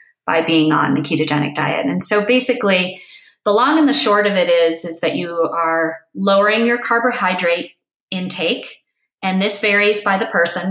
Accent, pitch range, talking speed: American, 170-230 Hz, 175 wpm